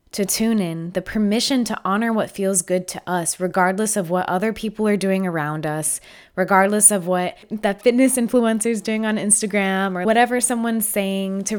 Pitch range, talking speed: 180-230 Hz, 185 wpm